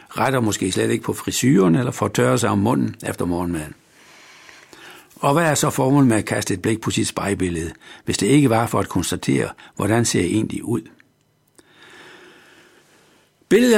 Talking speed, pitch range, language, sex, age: 175 wpm, 105-155 Hz, Danish, male, 60-79